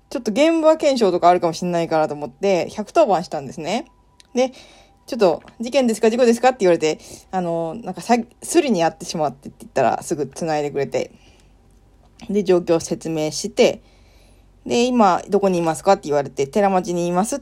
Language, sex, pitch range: Japanese, female, 190-265 Hz